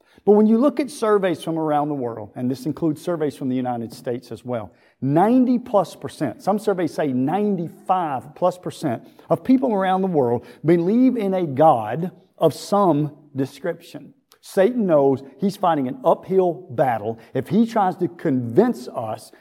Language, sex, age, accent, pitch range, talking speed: English, male, 50-69, American, 130-195 Hz, 165 wpm